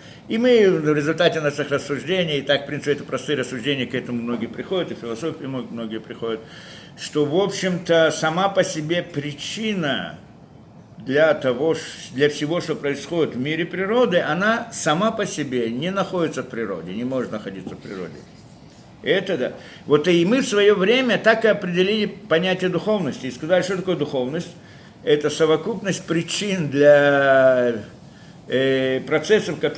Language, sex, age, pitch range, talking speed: Russian, male, 60-79, 150-195 Hz, 145 wpm